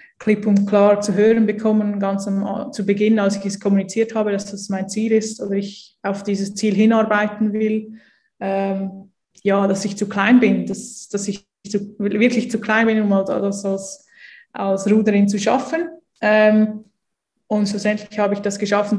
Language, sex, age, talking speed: German, female, 20-39, 170 wpm